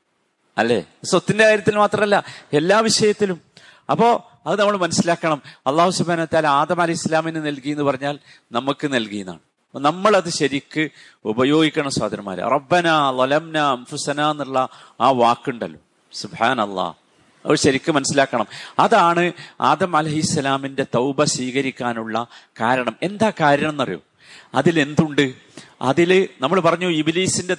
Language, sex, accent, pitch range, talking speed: Malayalam, male, native, 135-170 Hz, 100 wpm